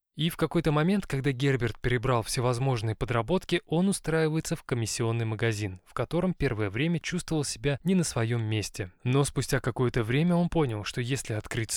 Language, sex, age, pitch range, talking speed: Russian, male, 20-39, 110-150 Hz, 170 wpm